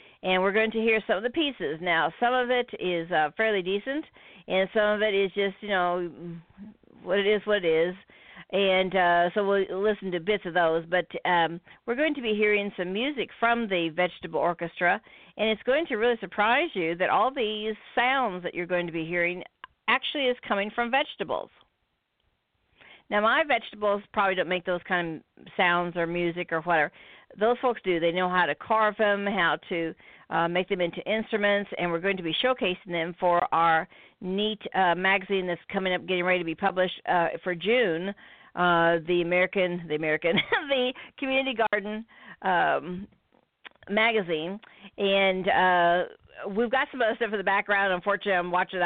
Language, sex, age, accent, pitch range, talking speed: English, female, 50-69, American, 175-215 Hz, 185 wpm